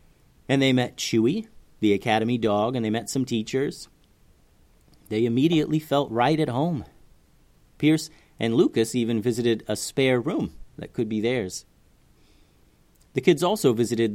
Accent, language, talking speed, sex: American, English, 145 wpm, male